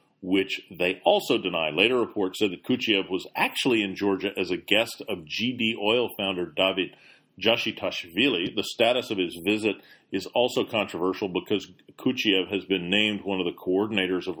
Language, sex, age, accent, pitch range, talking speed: English, male, 40-59, American, 90-105 Hz, 165 wpm